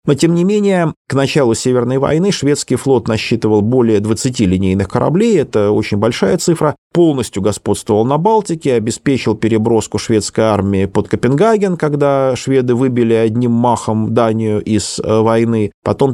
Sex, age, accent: male, 30-49, native